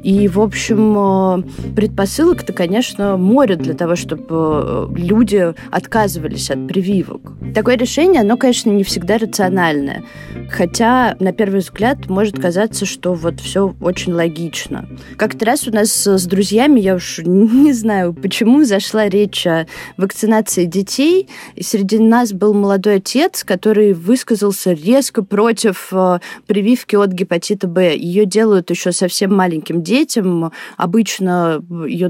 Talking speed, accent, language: 130 wpm, native, Russian